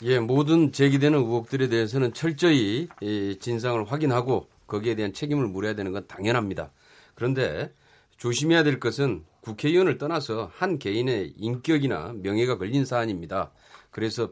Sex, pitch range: male, 115-155 Hz